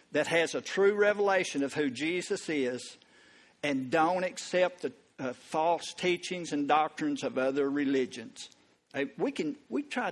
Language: English